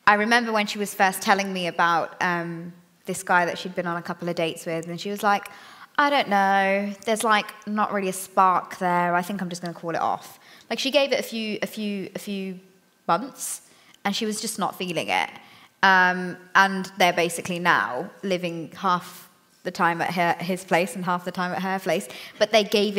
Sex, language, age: female, English, 20-39